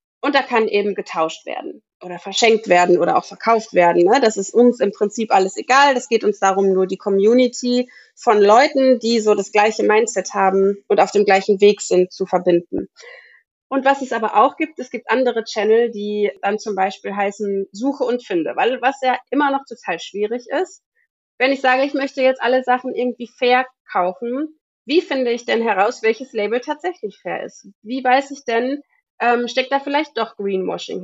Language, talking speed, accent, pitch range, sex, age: German, 190 wpm, German, 210-270 Hz, female, 30-49